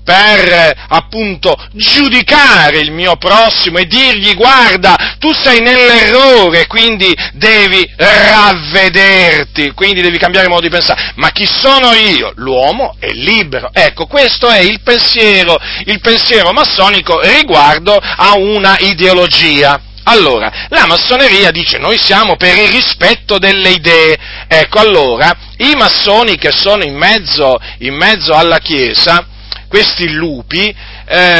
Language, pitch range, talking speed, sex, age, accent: Italian, 170-240 Hz, 125 wpm, male, 40-59, native